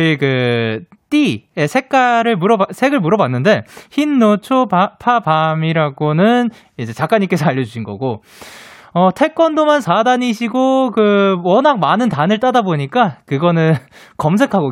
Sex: male